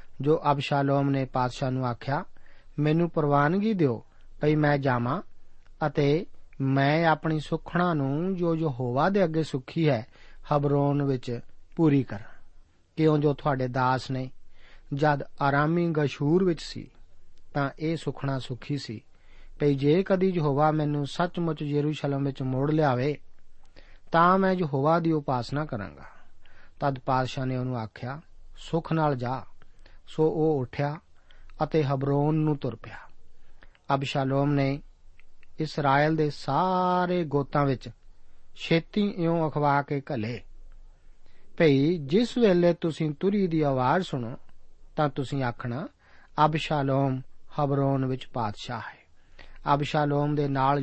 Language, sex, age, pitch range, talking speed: Punjabi, male, 40-59, 125-155 Hz, 125 wpm